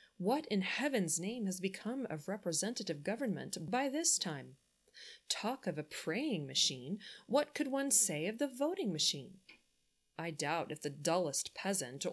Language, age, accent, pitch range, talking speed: English, 20-39, American, 155-215 Hz, 155 wpm